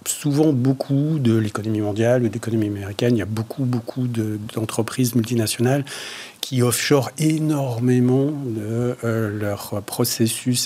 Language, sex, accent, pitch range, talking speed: French, male, French, 110-130 Hz, 130 wpm